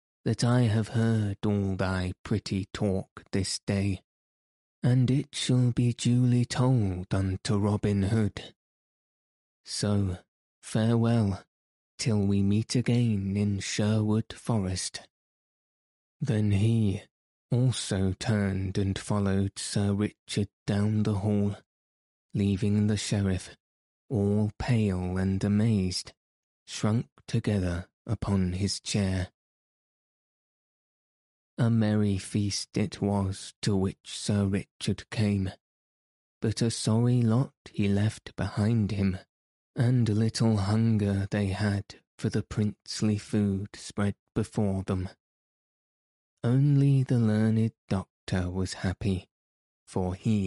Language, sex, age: English, male, 20-39